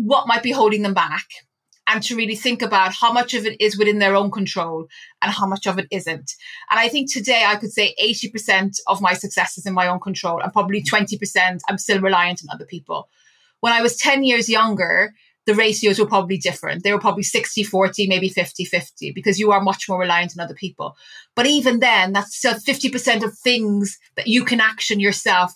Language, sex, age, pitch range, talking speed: English, female, 30-49, 195-230 Hz, 215 wpm